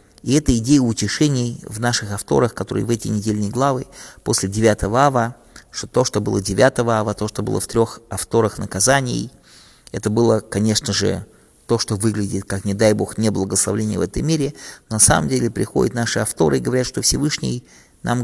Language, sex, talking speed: English, male, 180 wpm